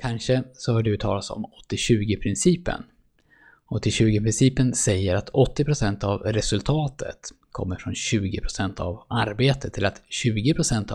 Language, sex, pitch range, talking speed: Swedish, male, 105-130 Hz, 115 wpm